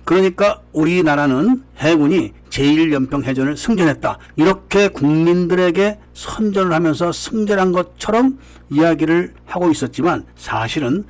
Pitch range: 145-195 Hz